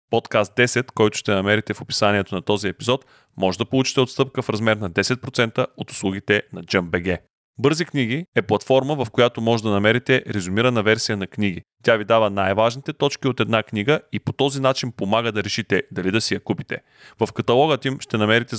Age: 30-49